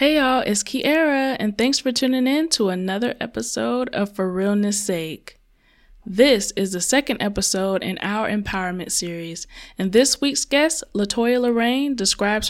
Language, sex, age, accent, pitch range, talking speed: English, female, 20-39, American, 190-255 Hz, 155 wpm